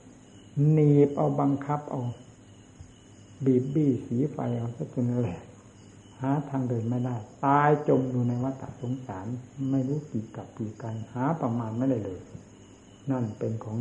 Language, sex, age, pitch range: Thai, male, 60-79, 110-140 Hz